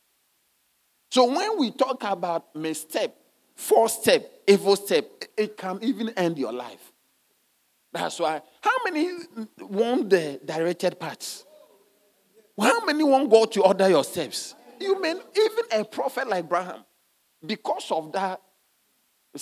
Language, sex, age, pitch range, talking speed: English, male, 50-69, 135-220 Hz, 135 wpm